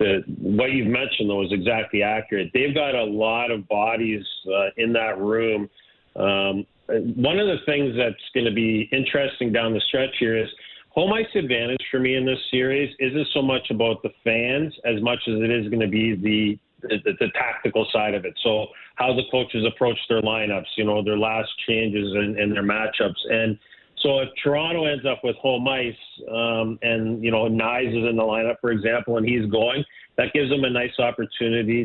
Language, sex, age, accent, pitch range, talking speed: English, male, 40-59, American, 110-130 Hz, 200 wpm